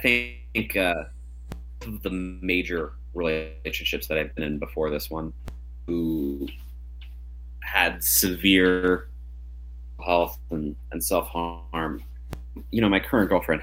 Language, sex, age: English, male, 30-49